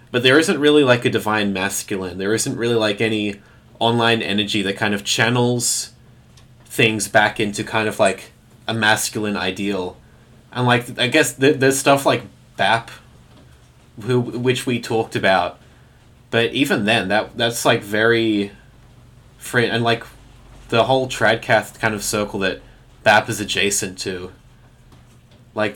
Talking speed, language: 145 wpm, English